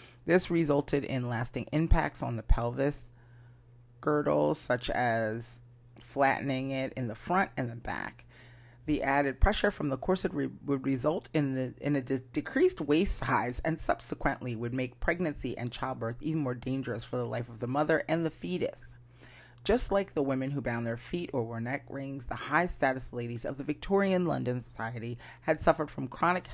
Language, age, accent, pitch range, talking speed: English, 30-49, American, 120-150 Hz, 170 wpm